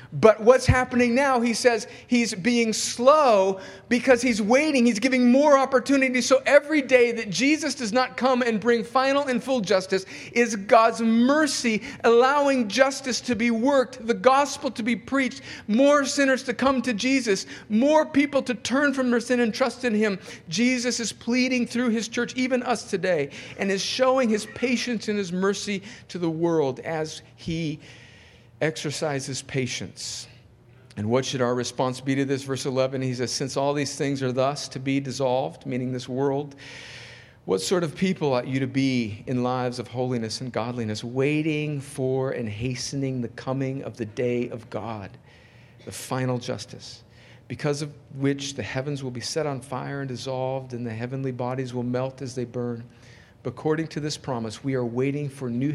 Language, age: English, 50-69